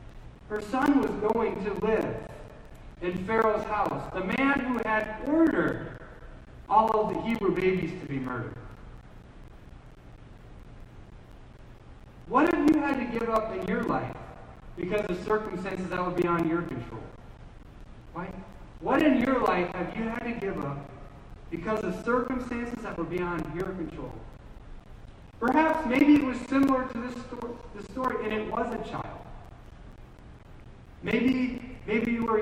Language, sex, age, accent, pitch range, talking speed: English, male, 40-59, American, 175-230 Hz, 140 wpm